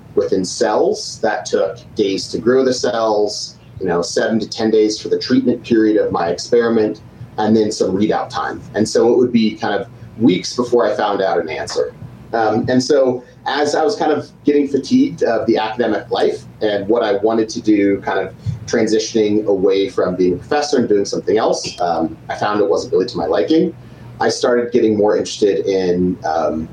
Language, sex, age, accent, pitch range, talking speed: English, male, 30-49, American, 105-130 Hz, 200 wpm